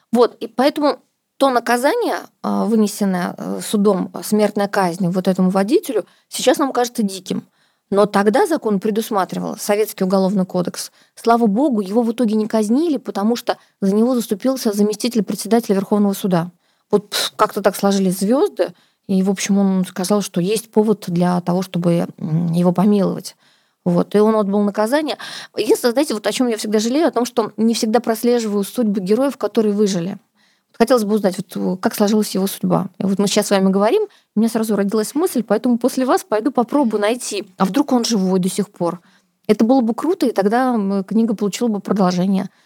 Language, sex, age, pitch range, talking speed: Russian, female, 20-39, 195-235 Hz, 175 wpm